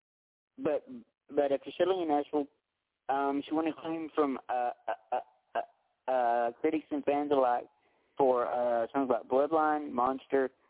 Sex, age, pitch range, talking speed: male, 40-59, 130-155 Hz, 155 wpm